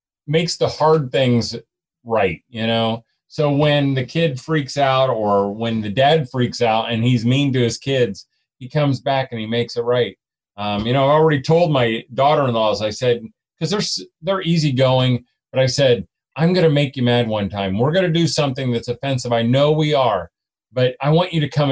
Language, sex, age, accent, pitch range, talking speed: English, male, 40-59, American, 115-150 Hz, 205 wpm